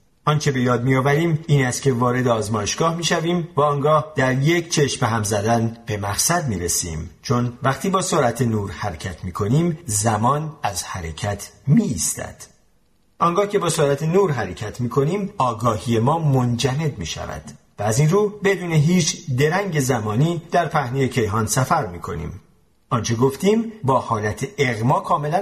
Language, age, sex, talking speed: Persian, 40-59, male, 155 wpm